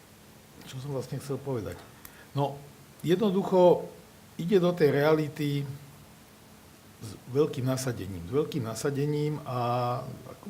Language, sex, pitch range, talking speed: Slovak, male, 125-160 Hz, 110 wpm